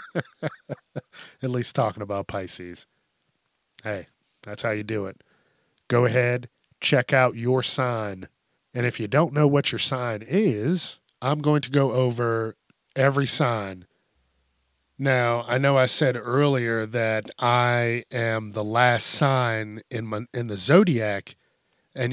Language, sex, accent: English, male, American